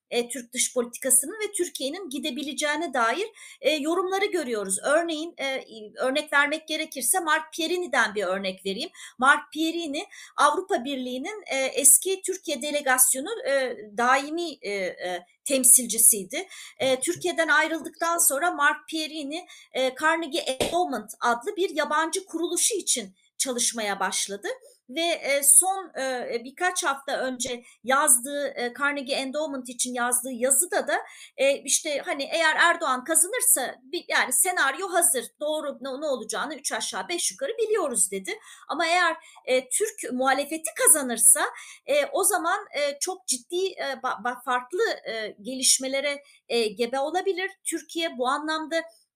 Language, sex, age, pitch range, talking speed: Turkish, female, 40-59, 255-345 Hz, 105 wpm